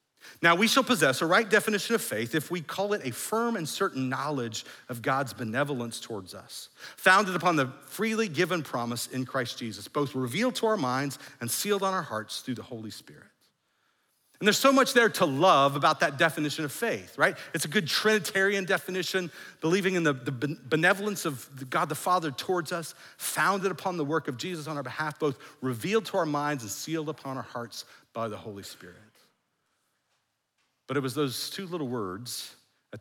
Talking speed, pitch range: 190 wpm, 120-175 Hz